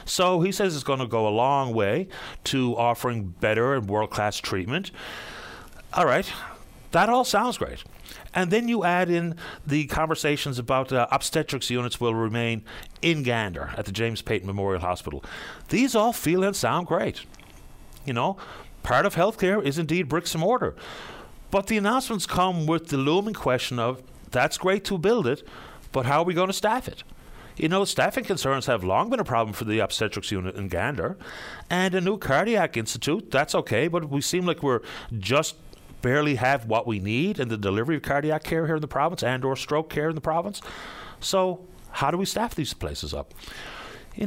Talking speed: 190 wpm